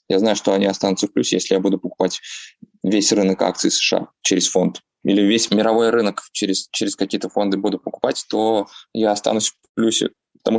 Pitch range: 100-125 Hz